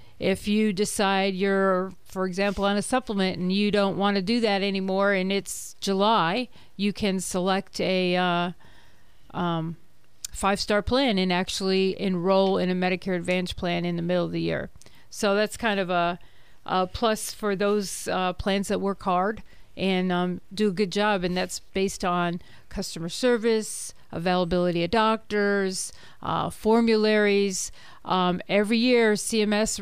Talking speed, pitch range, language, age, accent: 155 wpm, 180-210 Hz, English, 40-59, American